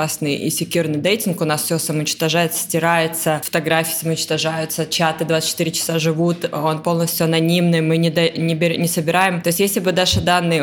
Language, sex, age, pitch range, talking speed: Russian, female, 20-39, 160-180 Hz, 170 wpm